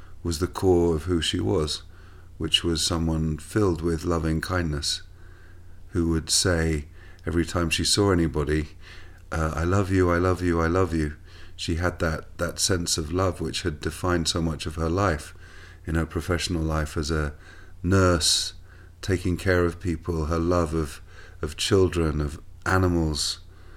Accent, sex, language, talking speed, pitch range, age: British, male, English, 160 wpm, 80-90 Hz, 40-59